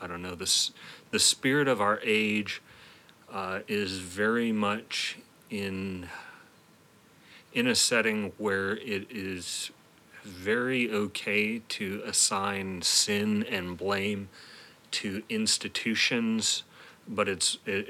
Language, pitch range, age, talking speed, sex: English, 95-110 Hz, 30-49, 105 wpm, male